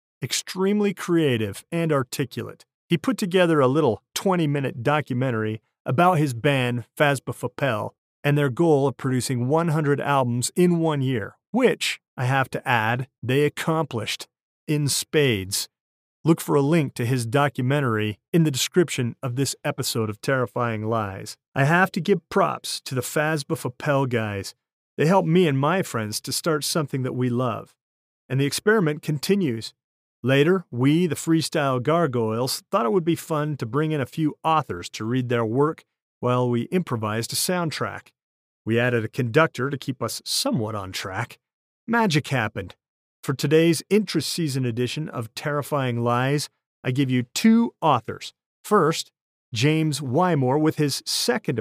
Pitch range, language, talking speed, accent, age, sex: 120-160 Hz, English, 155 wpm, American, 40-59, male